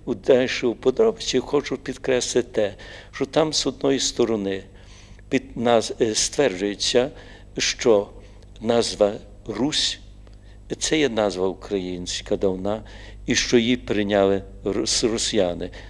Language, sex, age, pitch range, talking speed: Russian, male, 50-69, 100-125 Hz, 105 wpm